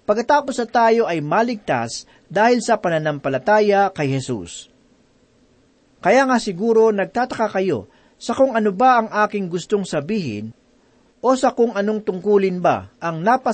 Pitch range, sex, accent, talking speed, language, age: 160-225 Hz, male, native, 135 wpm, Filipino, 40-59